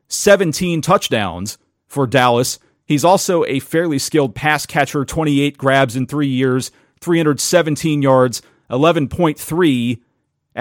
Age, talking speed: 40-59, 105 wpm